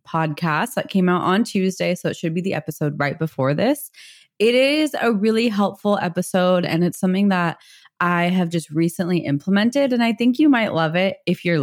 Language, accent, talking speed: English, American, 200 wpm